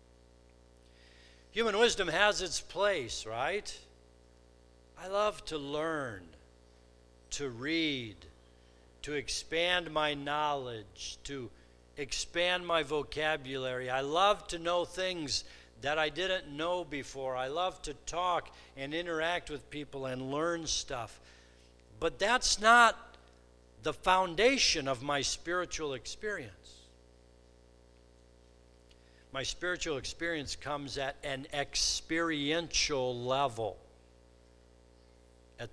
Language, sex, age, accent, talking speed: English, male, 60-79, American, 100 wpm